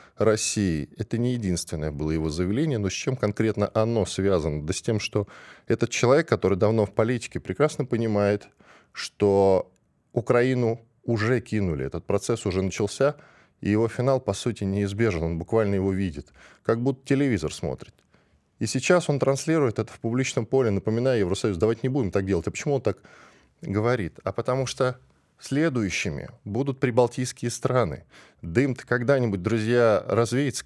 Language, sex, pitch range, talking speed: Russian, male, 100-140 Hz, 155 wpm